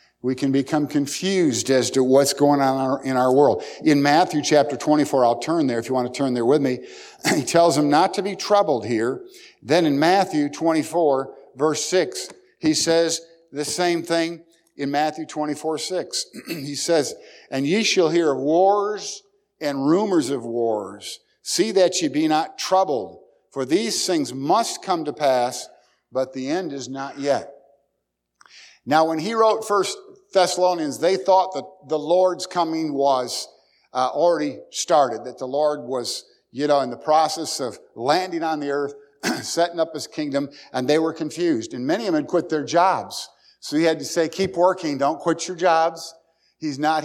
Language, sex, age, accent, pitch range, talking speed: English, male, 50-69, American, 140-175 Hz, 180 wpm